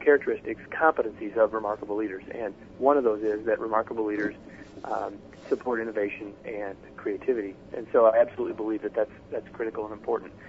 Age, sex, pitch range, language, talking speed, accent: 40-59, male, 110-140 Hz, English, 165 wpm, American